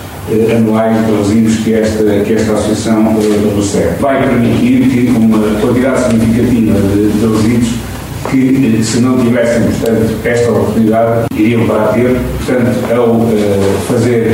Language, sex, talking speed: Portuguese, male, 140 wpm